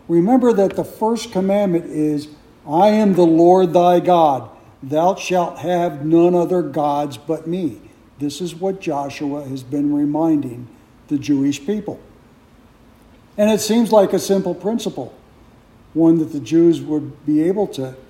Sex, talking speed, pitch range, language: male, 150 wpm, 130-190 Hz, English